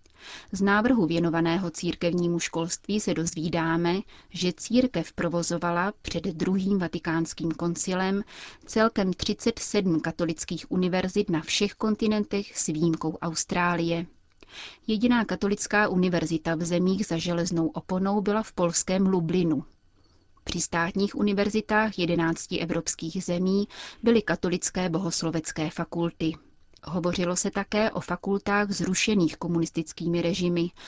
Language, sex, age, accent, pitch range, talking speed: Czech, female, 30-49, native, 165-195 Hz, 105 wpm